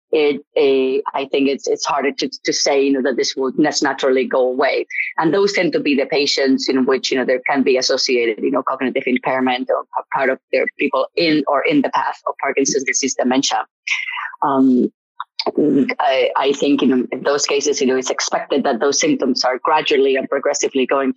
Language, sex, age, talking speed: English, female, 20-39, 205 wpm